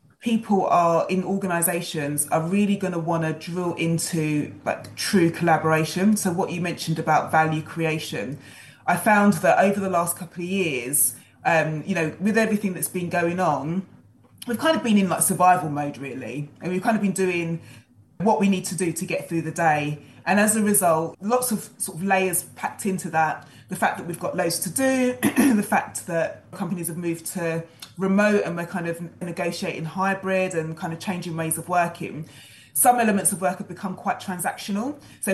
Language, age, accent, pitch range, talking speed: English, 20-39, British, 160-190 Hz, 195 wpm